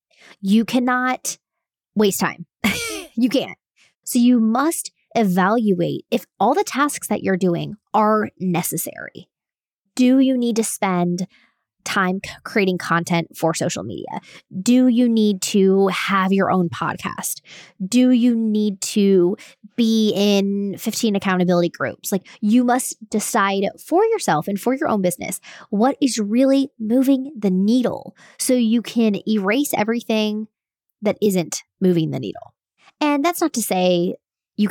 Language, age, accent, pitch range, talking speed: English, 20-39, American, 185-240 Hz, 140 wpm